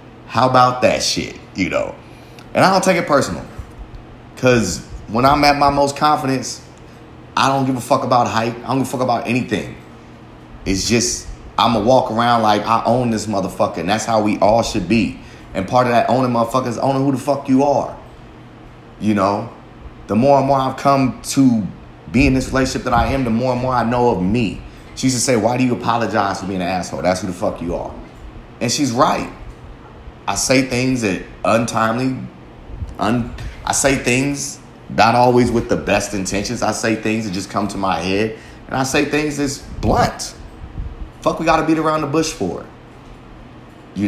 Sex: male